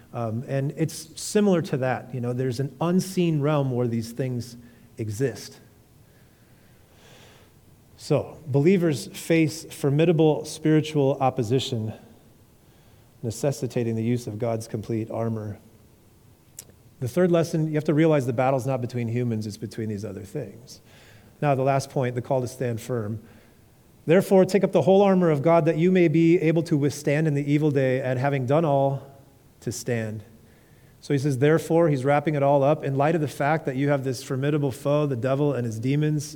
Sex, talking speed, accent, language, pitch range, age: male, 175 wpm, American, English, 115-150 Hz, 40-59